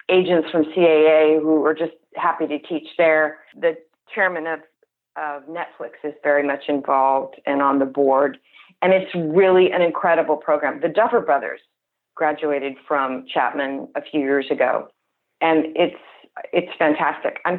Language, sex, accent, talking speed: English, female, American, 150 wpm